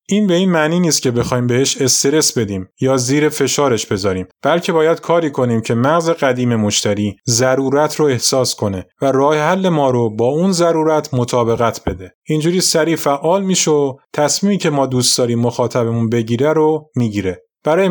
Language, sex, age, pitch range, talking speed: Persian, male, 30-49, 120-160 Hz, 170 wpm